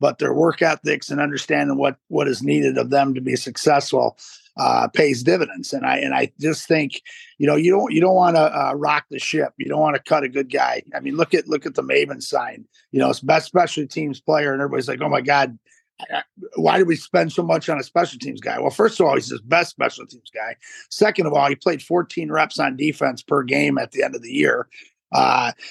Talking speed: 245 wpm